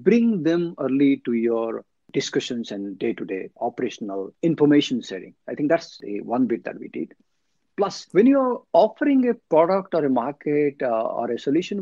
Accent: Indian